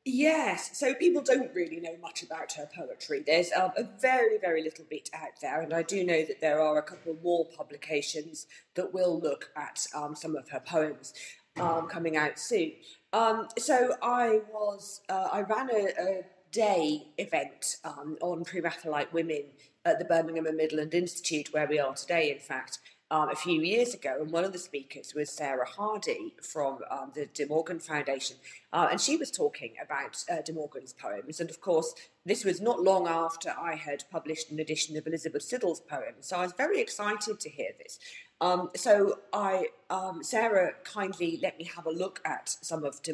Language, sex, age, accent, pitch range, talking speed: English, female, 30-49, British, 155-215 Hz, 195 wpm